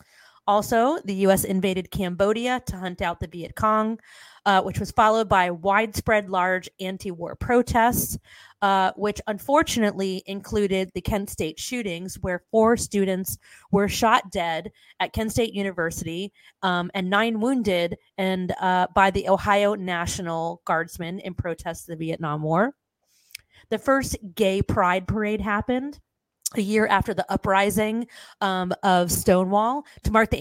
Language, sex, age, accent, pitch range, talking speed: English, female, 30-49, American, 185-220 Hz, 140 wpm